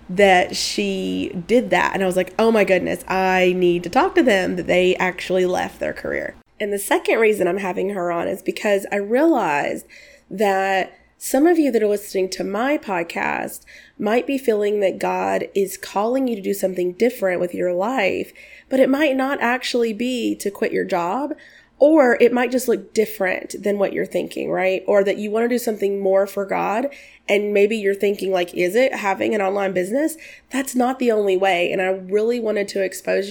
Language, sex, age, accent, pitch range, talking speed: English, female, 20-39, American, 185-235 Hz, 205 wpm